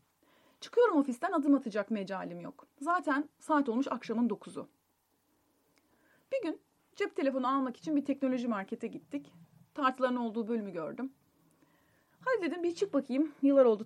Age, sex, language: 30-49, female, Turkish